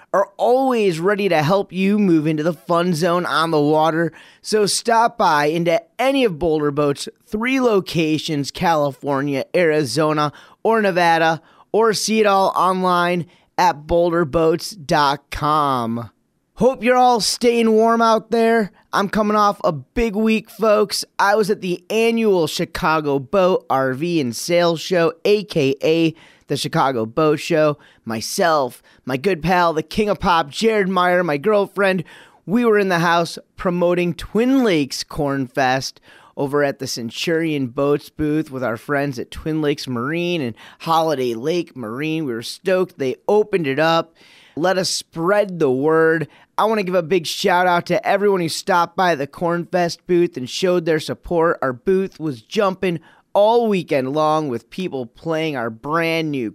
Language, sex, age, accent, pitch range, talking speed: English, male, 30-49, American, 150-200 Hz, 160 wpm